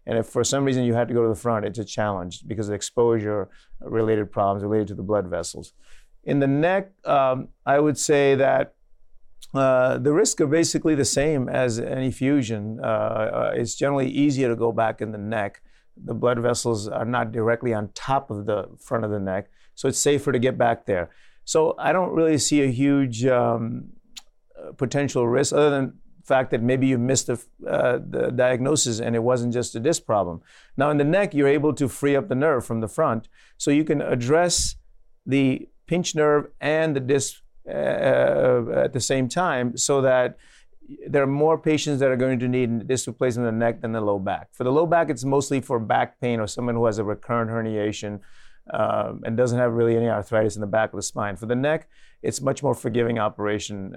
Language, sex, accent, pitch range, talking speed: English, male, American, 110-140 Hz, 210 wpm